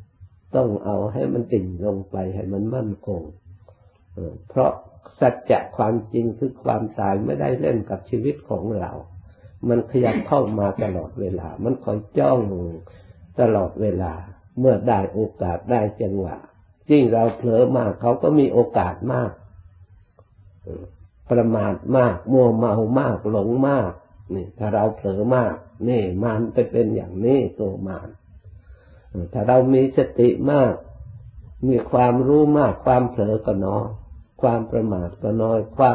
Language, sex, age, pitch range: Thai, male, 60-79, 95-125 Hz